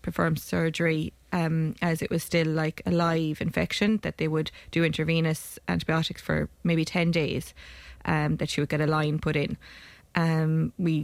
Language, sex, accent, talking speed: English, female, Irish, 175 wpm